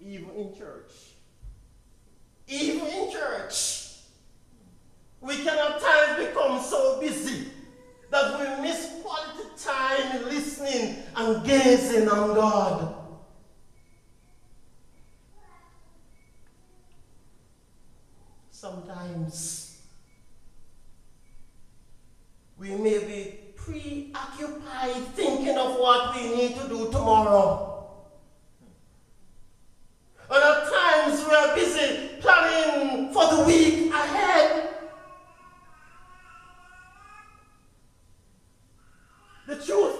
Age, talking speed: 50-69, 75 wpm